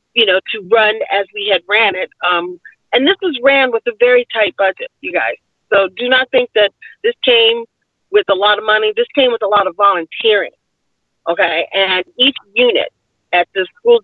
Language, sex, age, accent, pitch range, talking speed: English, female, 40-59, American, 190-245 Hz, 200 wpm